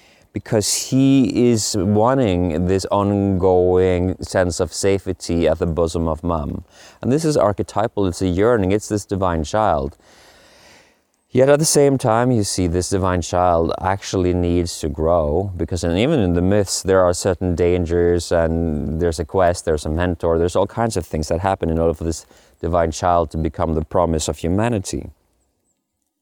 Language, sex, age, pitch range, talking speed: English, male, 20-39, 85-100 Hz, 170 wpm